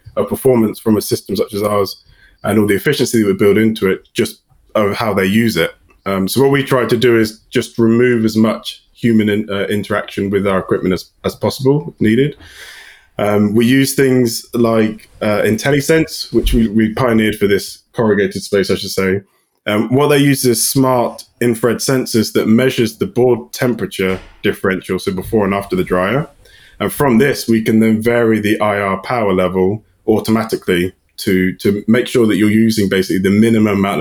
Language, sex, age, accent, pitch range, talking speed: English, male, 20-39, British, 95-120 Hz, 190 wpm